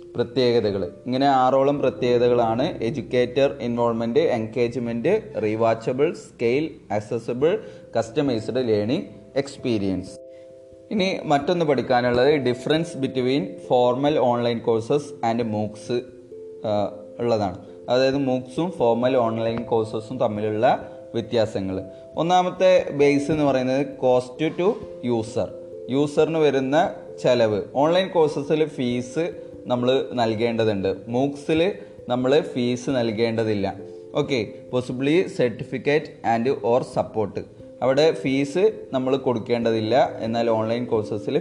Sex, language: male, Malayalam